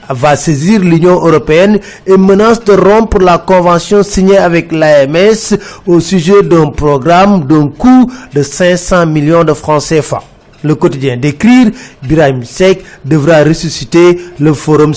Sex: male